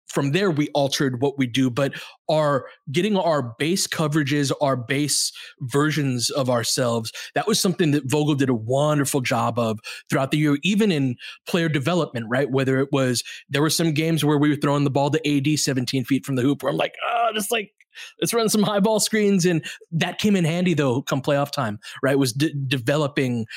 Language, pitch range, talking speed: English, 130-155 Hz, 195 wpm